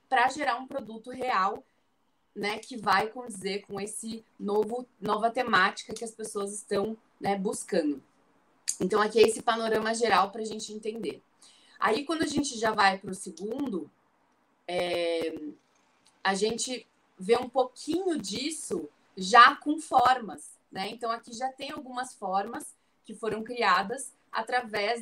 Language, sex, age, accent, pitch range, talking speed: Portuguese, female, 20-39, Brazilian, 205-255 Hz, 145 wpm